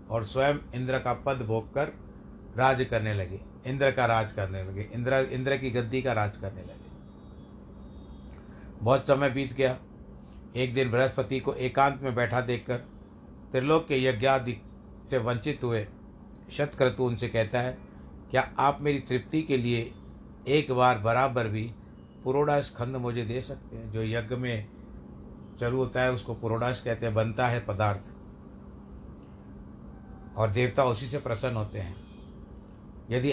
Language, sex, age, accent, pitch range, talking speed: Hindi, male, 60-79, native, 105-135 Hz, 145 wpm